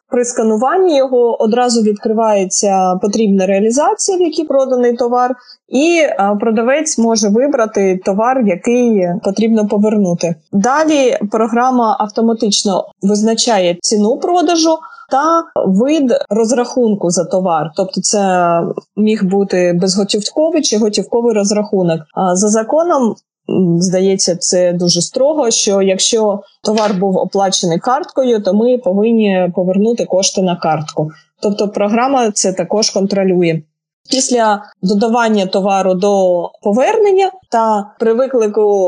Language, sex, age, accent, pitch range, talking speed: Ukrainian, female, 20-39, native, 195-250 Hz, 110 wpm